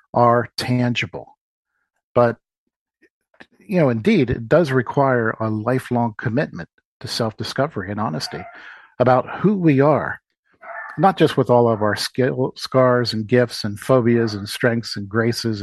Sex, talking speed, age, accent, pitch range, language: male, 140 wpm, 50-69, American, 115-135 Hz, English